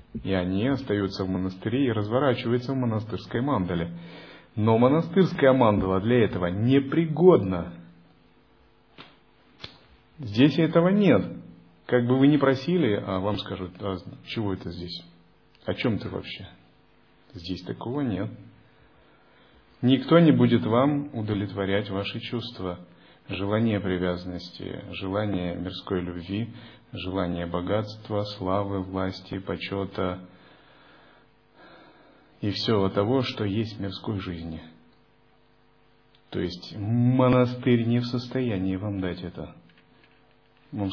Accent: native